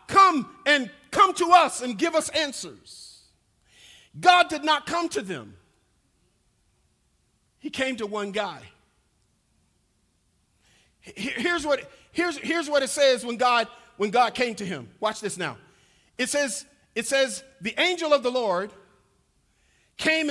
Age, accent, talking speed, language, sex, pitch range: 50-69, American, 140 wpm, English, male, 230-310 Hz